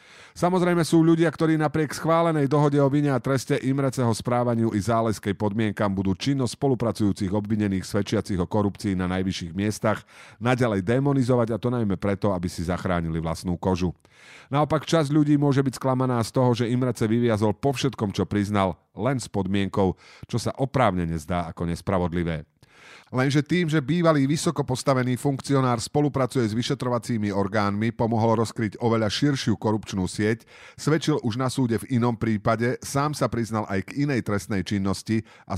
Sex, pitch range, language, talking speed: male, 100-130 Hz, Slovak, 155 wpm